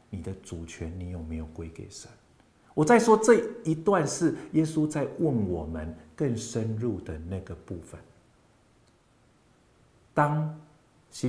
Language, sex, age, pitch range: Chinese, male, 50-69, 90-125 Hz